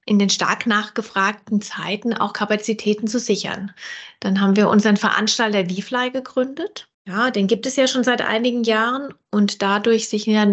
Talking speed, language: 160 wpm, German